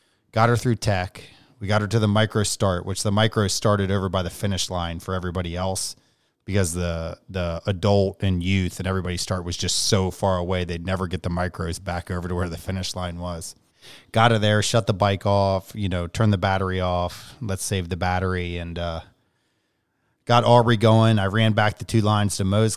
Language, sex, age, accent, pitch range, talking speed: English, male, 30-49, American, 90-105 Hz, 210 wpm